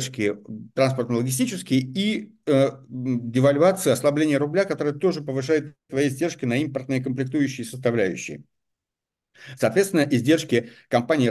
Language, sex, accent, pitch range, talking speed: Russian, male, native, 110-140 Hz, 100 wpm